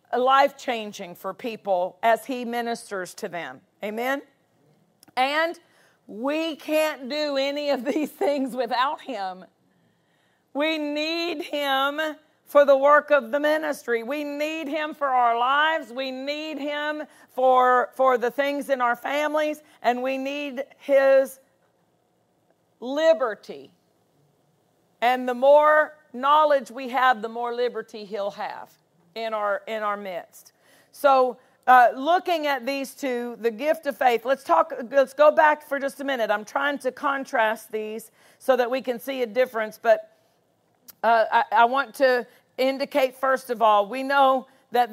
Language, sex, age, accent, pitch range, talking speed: English, female, 50-69, American, 235-285 Hz, 145 wpm